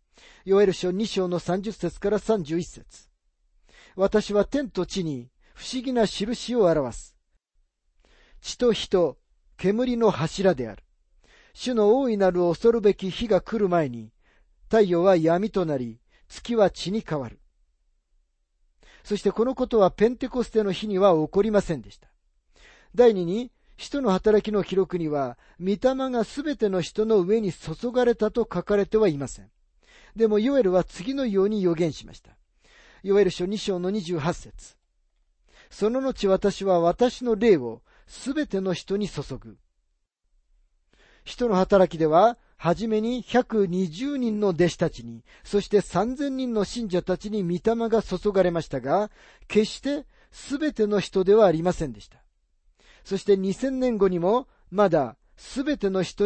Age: 40-59